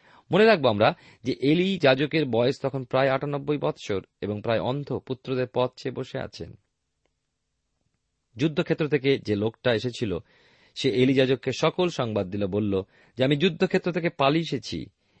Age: 40-59